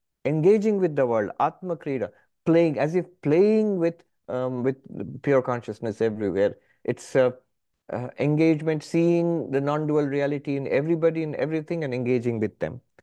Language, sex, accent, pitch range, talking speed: English, male, Indian, 140-190 Hz, 145 wpm